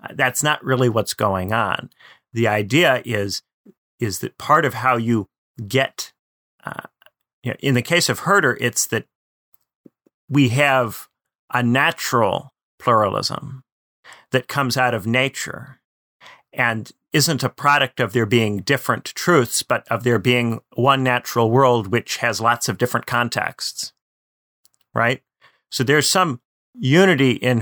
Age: 40-59